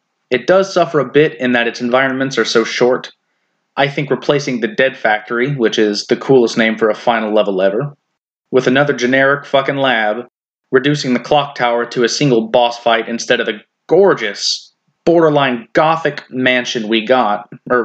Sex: male